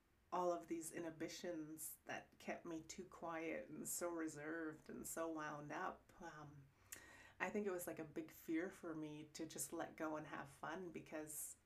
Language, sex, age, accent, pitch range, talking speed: English, female, 30-49, American, 155-175 Hz, 180 wpm